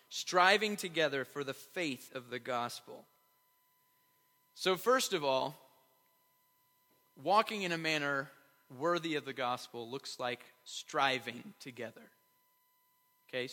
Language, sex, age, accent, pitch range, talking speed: English, male, 30-49, American, 140-205 Hz, 110 wpm